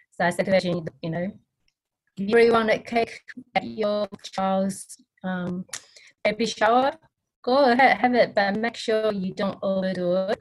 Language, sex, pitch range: English, female, 175-220 Hz